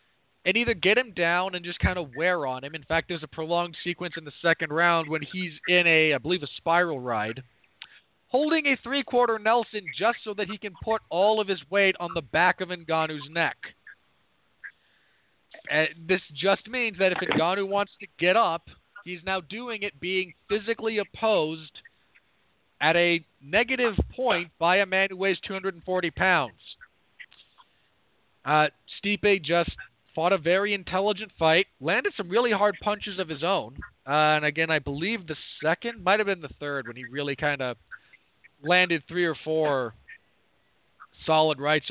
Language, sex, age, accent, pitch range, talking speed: English, male, 40-59, American, 155-200 Hz, 170 wpm